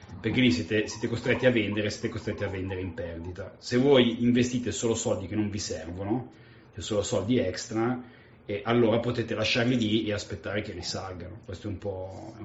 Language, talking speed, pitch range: Italian, 195 wpm, 100-120 Hz